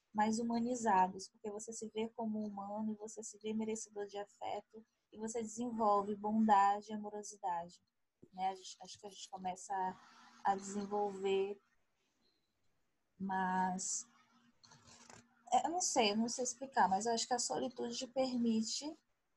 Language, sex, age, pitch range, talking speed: Portuguese, female, 10-29, 205-250 Hz, 145 wpm